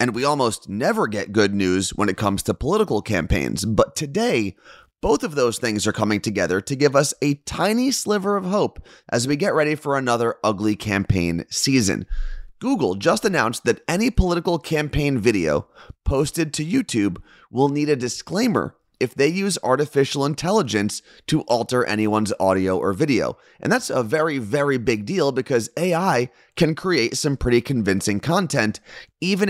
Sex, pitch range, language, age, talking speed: male, 105-150 Hz, English, 30-49, 165 wpm